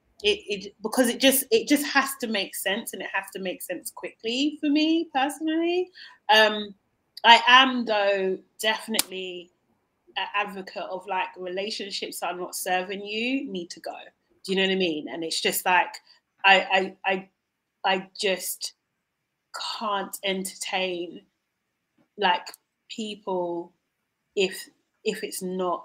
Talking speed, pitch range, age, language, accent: 145 wpm, 180-230 Hz, 30-49, English, British